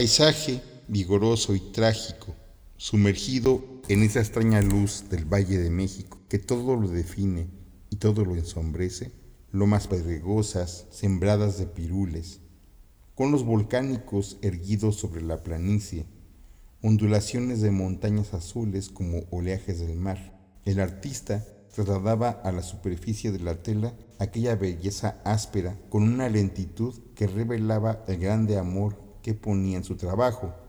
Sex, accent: male, Mexican